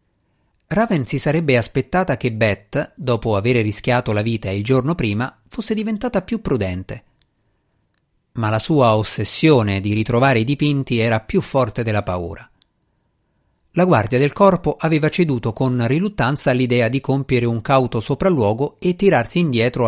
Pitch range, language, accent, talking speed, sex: 110-155 Hz, Italian, native, 145 wpm, male